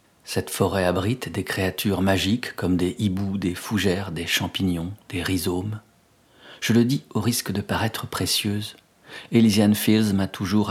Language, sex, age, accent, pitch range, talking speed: English, male, 40-59, French, 95-110 Hz, 150 wpm